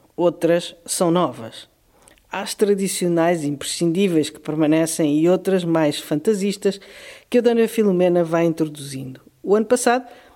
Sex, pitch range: female, 150-200 Hz